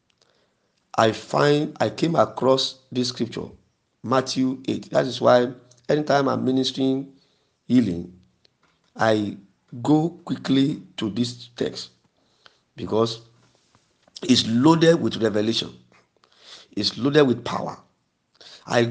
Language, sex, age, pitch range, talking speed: English, male, 50-69, 105-135 Hz, 100 wpm